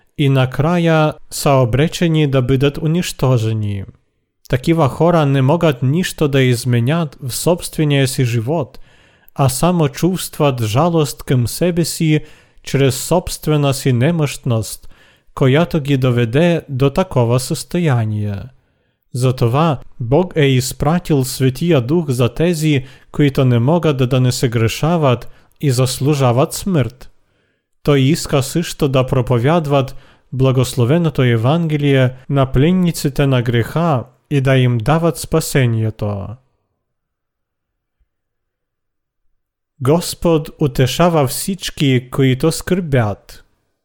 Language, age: Bulgarian, 40-59